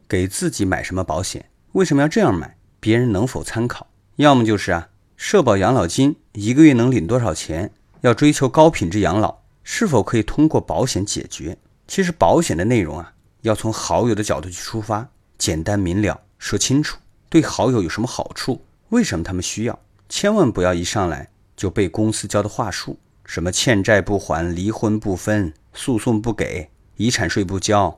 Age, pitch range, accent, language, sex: 30-49, 95-120 Hz, native, Chinese, male